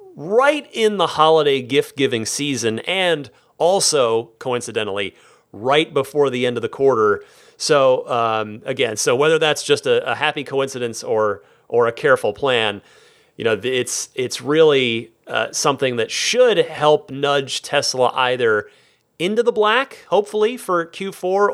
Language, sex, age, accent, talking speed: English, male, 30-49, American, 145 wpm